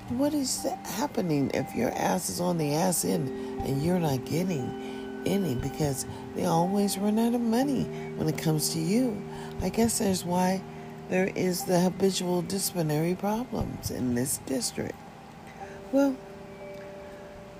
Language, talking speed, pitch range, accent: English, 145 wpm, 115-195 Hz, American